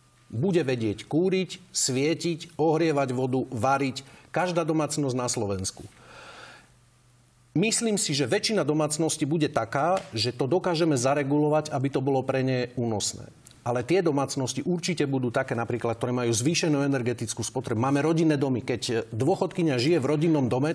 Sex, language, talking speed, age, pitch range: male, Slovak, 140 wpm, 40-59, 120-155 Hz